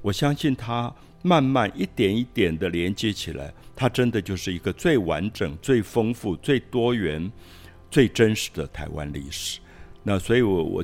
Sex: male